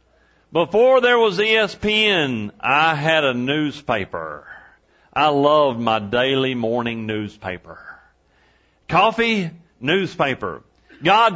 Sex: male